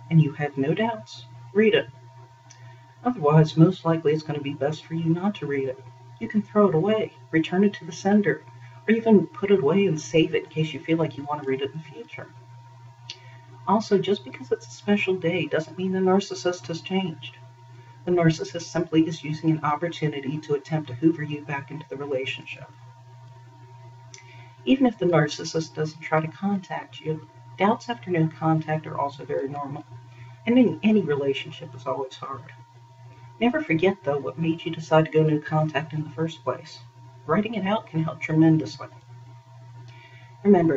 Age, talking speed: 40-59, 185 wpm